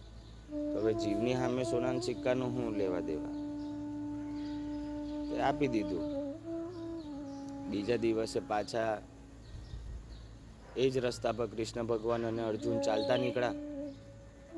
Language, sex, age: Hindi, male, 30-49